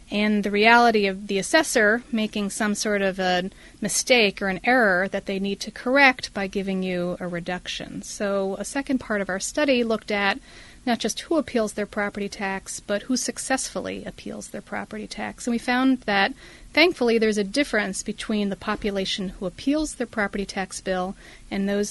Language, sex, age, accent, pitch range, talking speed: English, female, 40-59, American, 195-235 Hz, 185 wpm